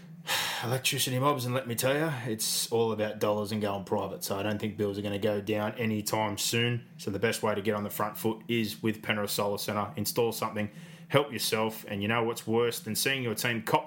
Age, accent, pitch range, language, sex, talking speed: 20-39, Australian, 105-130 Hz, English, male, 240 wpm